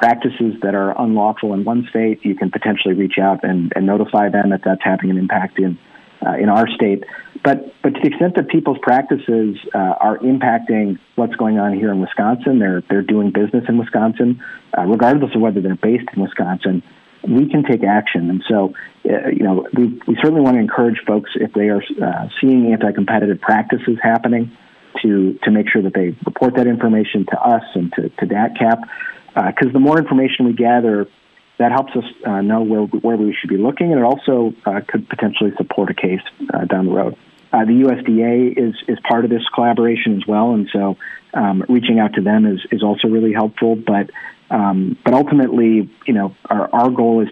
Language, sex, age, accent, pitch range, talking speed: English, male, 50-69, American, 100-120 Hz, 205 wpm